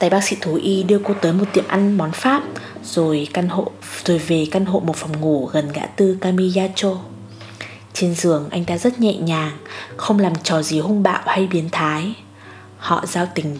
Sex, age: female, 20-39